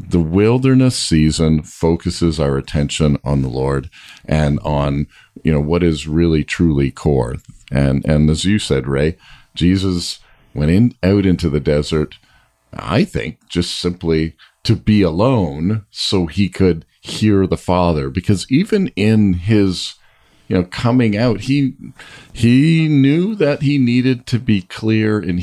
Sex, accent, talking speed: male, American, 145 wpm